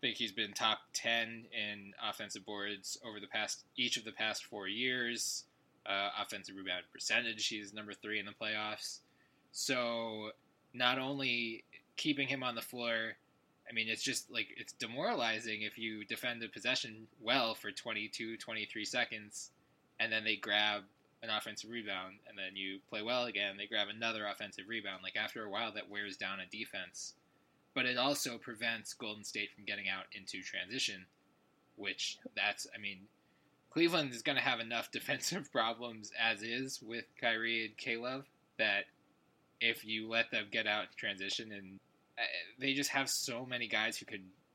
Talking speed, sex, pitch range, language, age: 170 wpm, male, 105-120 Hz, English, 20-39